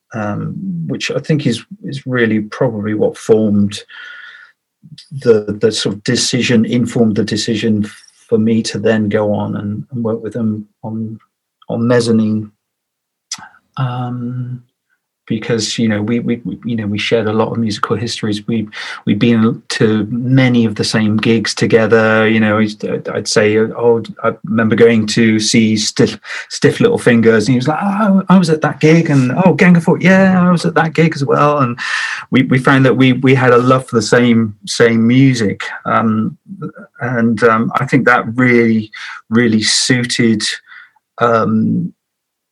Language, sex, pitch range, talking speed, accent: English, male, 110-135 Hz, 165 wpm, British